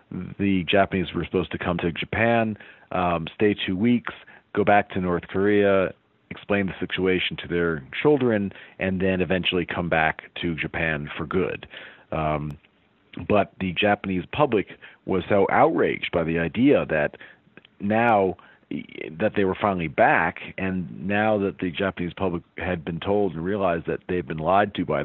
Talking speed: 160 wpm